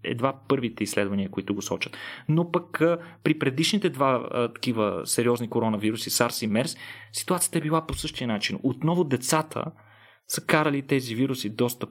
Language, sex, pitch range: Bulgarian, male, 120-160 Hz